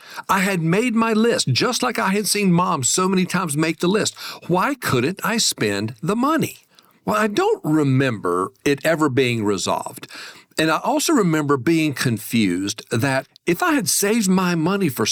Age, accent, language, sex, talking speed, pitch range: 50-69, American, English, male, 180 wpm, 125-180 Hz